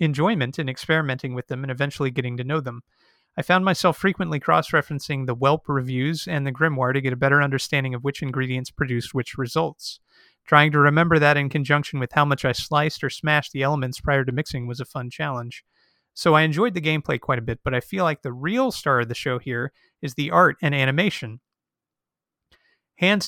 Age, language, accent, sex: 30-49, English, American, male